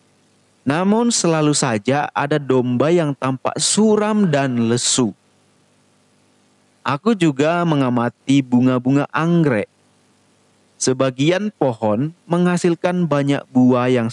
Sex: male